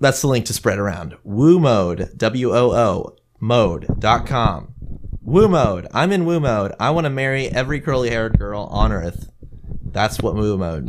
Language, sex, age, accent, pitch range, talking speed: English, male, 20-39, American, 100-150 Hz, 140 wpm